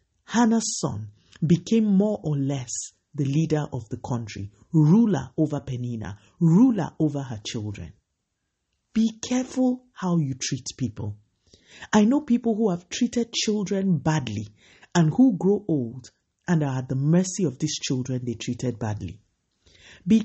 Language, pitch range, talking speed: English, 120-185 Hz, 140 wpm